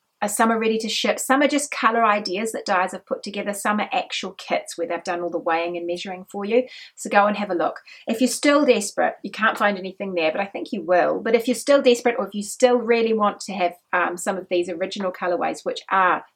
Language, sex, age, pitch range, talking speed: English, female, 30-49, 180-235 Hz, 255 wpm